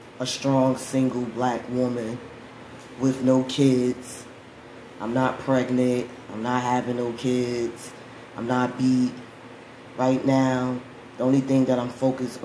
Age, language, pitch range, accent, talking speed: 20-39, English, 120-130 Hz, American, 130 wpm